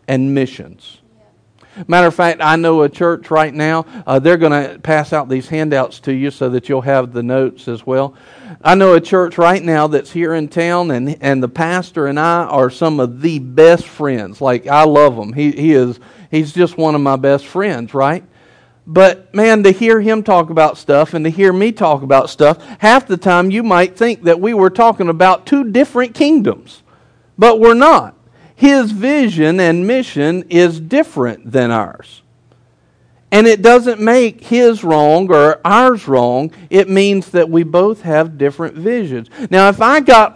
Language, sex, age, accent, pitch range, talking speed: English, male, 50-69, American, 150-215 Hz, 185 wpm